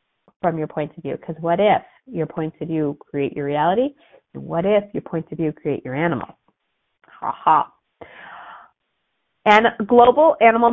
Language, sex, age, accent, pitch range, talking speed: English, female, 40-59, American, 150-215 Hz, 170 wpm